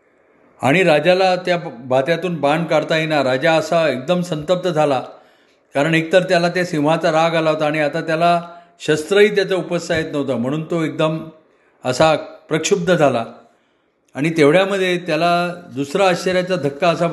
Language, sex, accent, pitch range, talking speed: Marathi, male, native, 145-180 Hz, 145 wpm